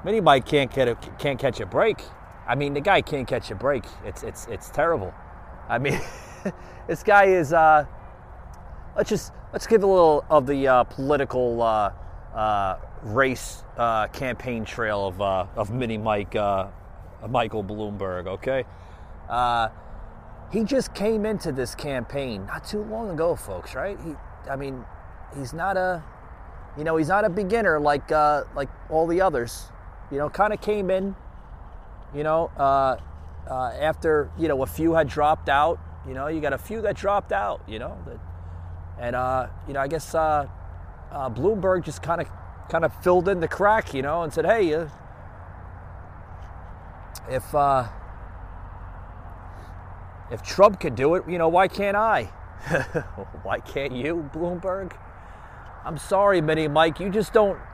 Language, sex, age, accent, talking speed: English, male, 30-49, American, 165 wpm